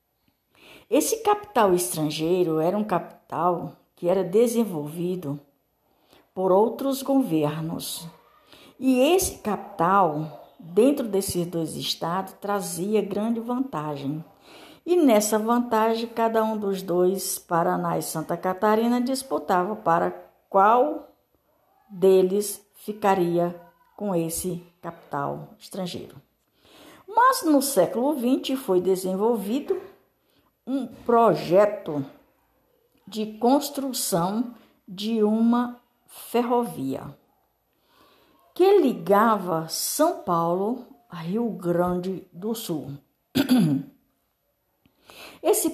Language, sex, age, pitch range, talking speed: Portuguese, female, 60-79, 175-245 Hz, 85 wpm